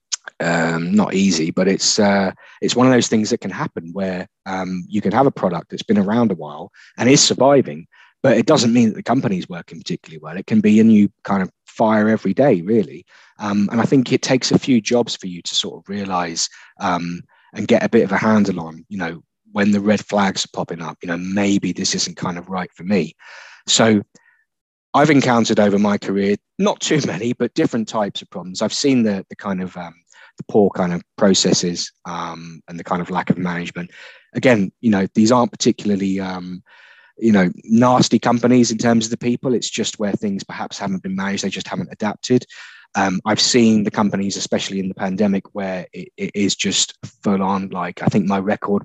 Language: English